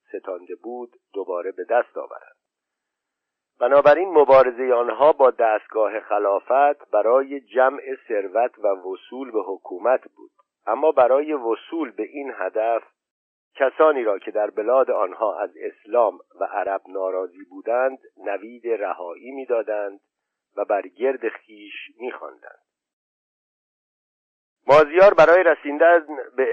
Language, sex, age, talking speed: Persian, male, 50-69, 115 wpm